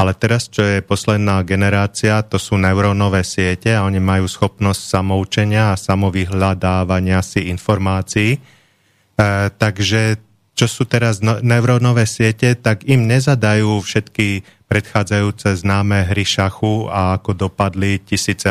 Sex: male